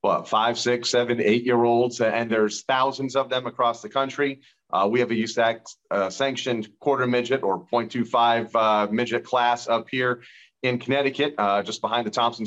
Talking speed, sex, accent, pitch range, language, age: 165 wpm, male, American, 110-135 Hz, English, 40-59